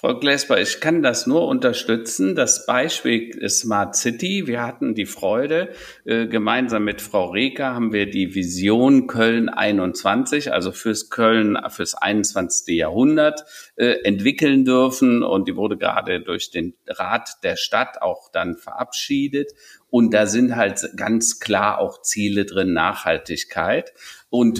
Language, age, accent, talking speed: German, 50-69, German, 140 wpm